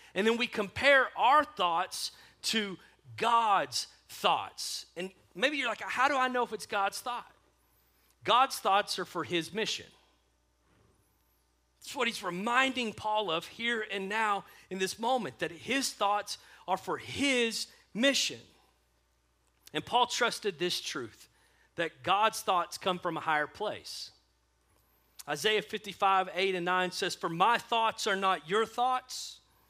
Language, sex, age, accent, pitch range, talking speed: English, male, 40-59, American, 180-250 Hz, 145 wpm